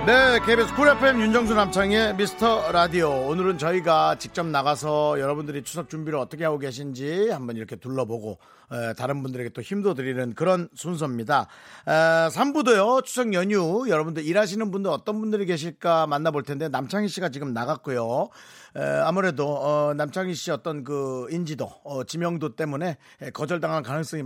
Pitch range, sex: 130-190 Hz, male